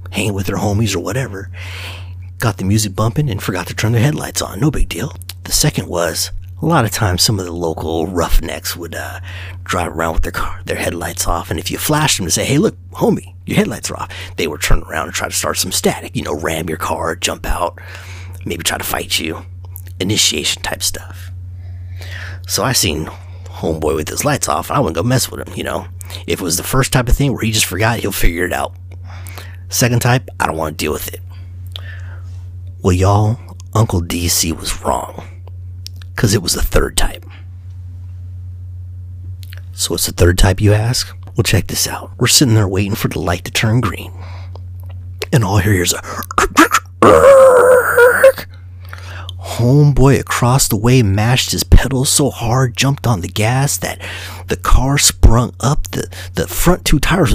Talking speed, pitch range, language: 190 wpm, 90-110 Hz, English